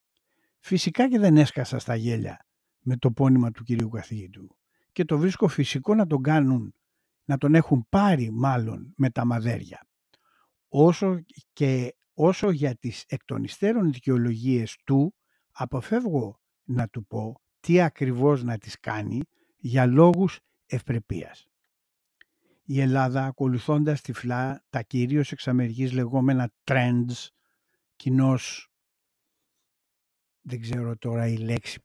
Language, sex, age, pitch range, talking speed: Greek, male, 60-79, 115-150 Hz, 115 wpm